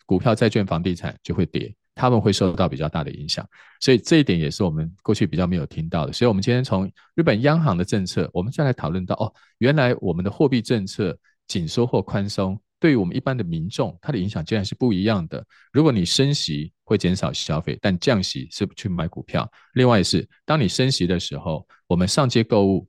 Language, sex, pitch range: Chinese, male, 90-120 Hz